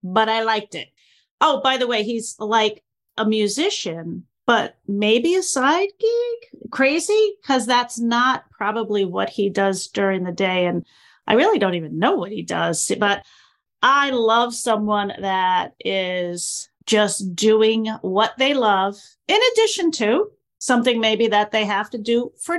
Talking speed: 155 wpm